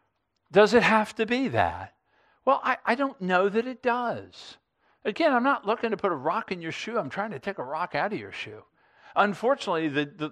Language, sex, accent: English, male, American